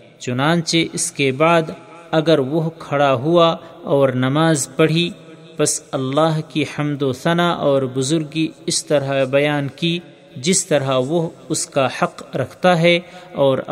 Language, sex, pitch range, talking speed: Urdu, male, 140-170 Hz, 140 wpm